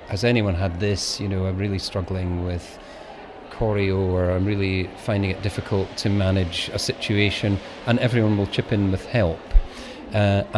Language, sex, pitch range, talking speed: English, male, 100-120 Hz, 165 wpm